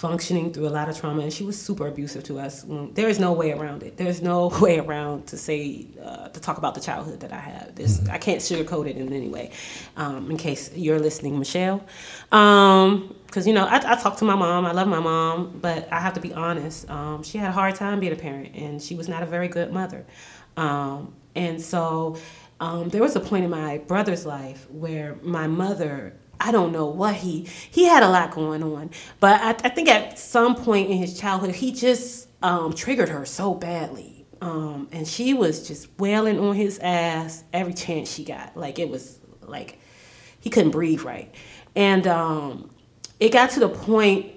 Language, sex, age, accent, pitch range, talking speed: English, female, 30-49, American, 155-195 Hz, 210 wpm